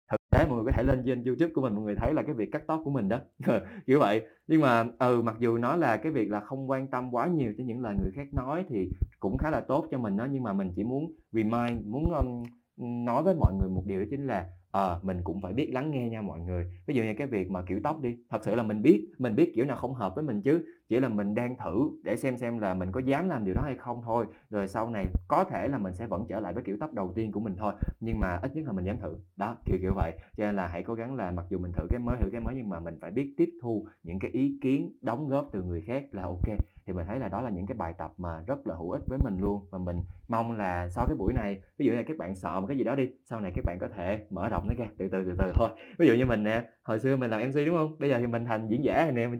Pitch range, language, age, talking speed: 95-130 Hz, Vietnamese, 20-39, 315 wpm